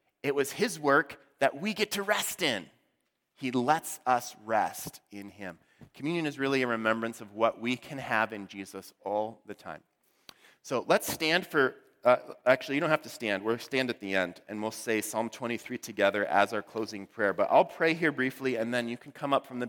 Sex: male